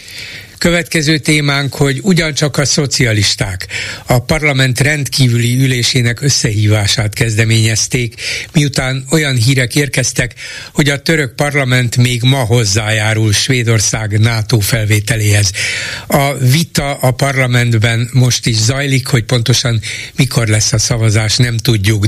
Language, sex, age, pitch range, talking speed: Hungarian, male, 60-79, 115-140 Hz, 110 wpm